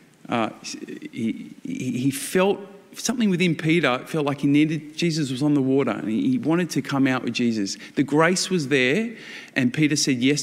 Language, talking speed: English, 185 wpm